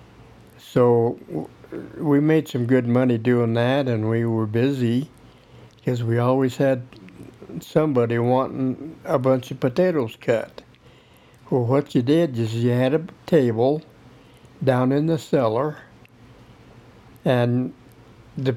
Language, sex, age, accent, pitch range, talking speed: English, male, 60-79, American, 115-135 Hz, 125 wpm